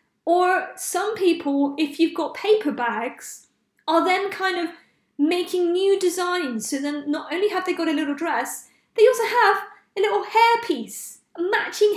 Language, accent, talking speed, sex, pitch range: English, British, 165 wpm, female, 275-360 Hz